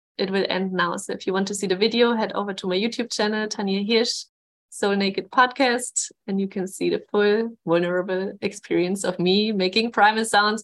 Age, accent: 20-39, German